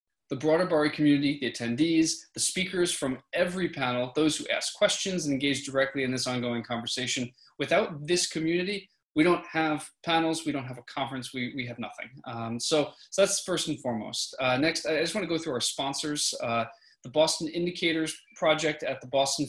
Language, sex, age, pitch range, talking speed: English, male, 20-39, 120-150 Hz, 190 wpm